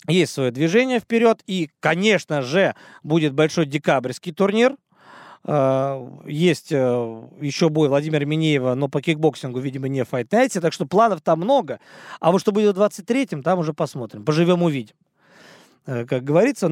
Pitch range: 145-200 Hz